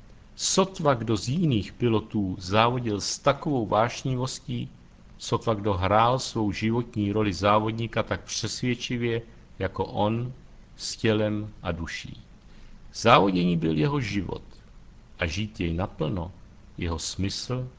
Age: 60-79